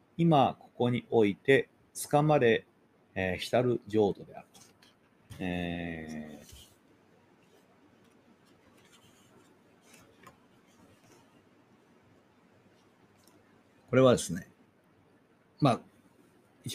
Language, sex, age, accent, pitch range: Japanese, male, 40-59, native, 95-125 Hz